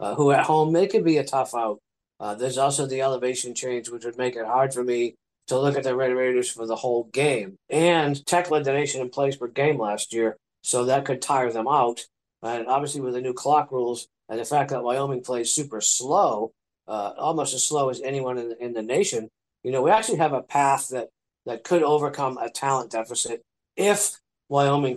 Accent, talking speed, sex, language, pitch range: American, 220 wpm, male, English, 120-145 Hz